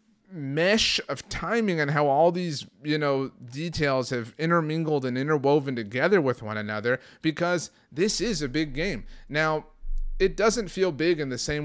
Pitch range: 125-165 Hz